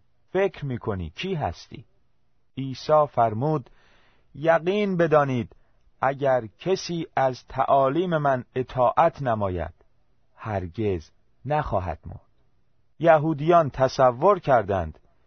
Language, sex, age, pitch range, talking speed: Persian, male, 40-59, 100-145 Hz, 85 wpm